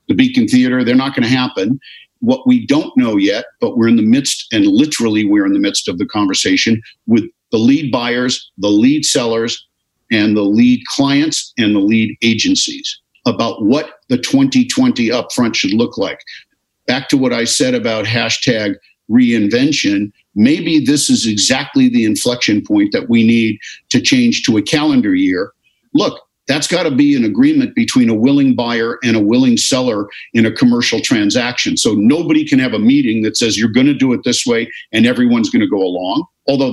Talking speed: 190 wpm